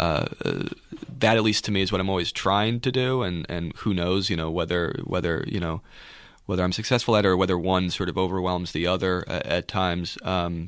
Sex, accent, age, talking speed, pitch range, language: male, American, 30-49, 225 wpm, 85-100 Hz, English